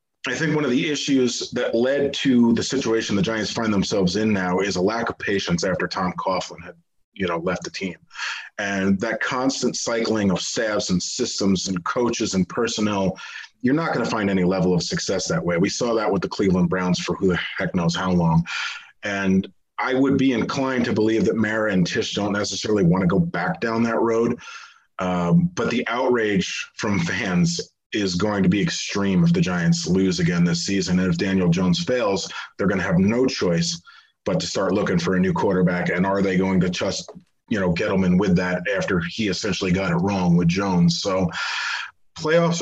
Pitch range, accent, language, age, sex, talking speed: 95-130 Hz, American, English, 30-49, male, 205 wpm